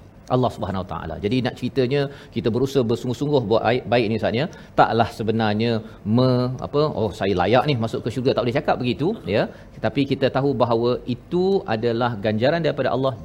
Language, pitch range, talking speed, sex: Malayalam, 110-145 Hz, 175 wpm, male